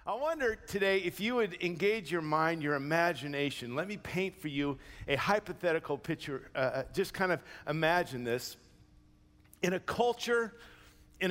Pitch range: 150-205 Hz